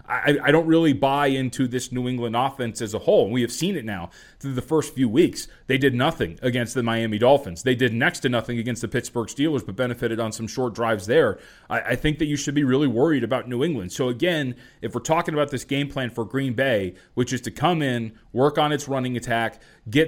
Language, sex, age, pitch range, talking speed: English, male, 30-49, 115-140 Hz, 240 wpm